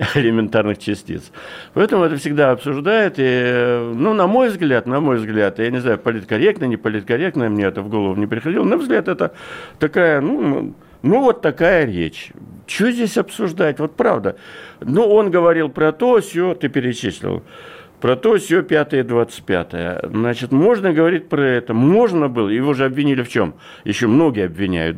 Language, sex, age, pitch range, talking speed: Russian, male, 60-79, 120-165 Hz, 170 wpm